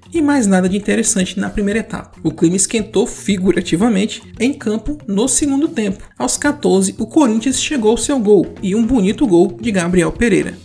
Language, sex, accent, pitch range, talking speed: Portuguese, male, Brazilian, 185-230 Hz, 180 wpm